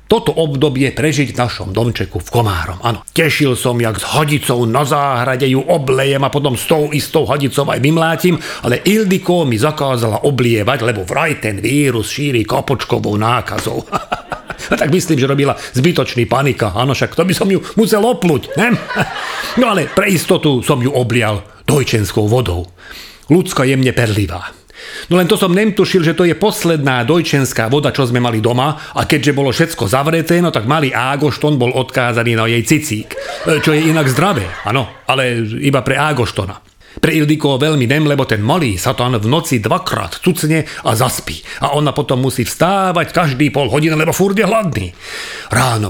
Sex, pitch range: male, 120-155 Hz